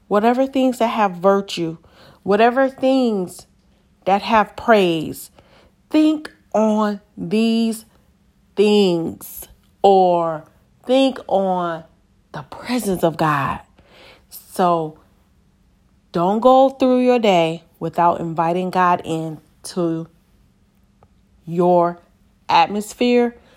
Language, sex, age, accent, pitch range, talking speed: English, female, 30-49, American, 165-225 Hz, 85 wpm